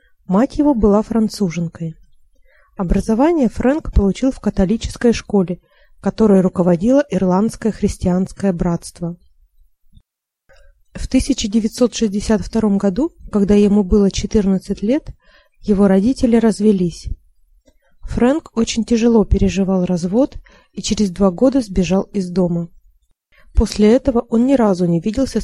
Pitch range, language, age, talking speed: 190-245 Hz, Russian, 30-49, 105 wpm